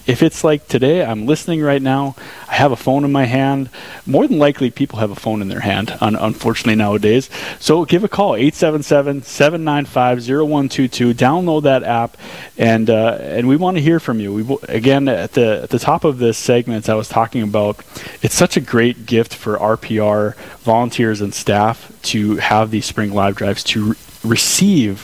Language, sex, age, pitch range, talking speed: English, male, 20-39, 110-140 Hz, 205 wpm